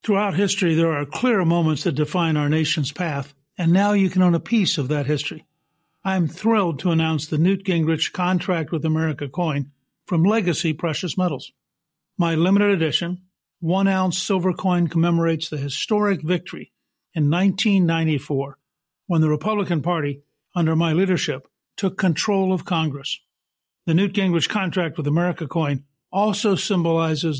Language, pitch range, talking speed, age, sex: English, 155-190 Hz, 150 wpm, 60-79, male